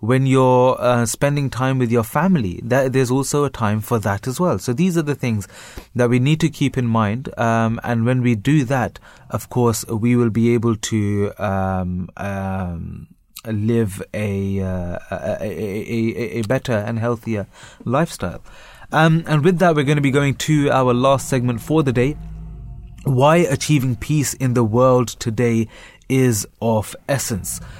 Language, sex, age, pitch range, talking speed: English, male, 30-49, 110-135 Hz, 175 wpm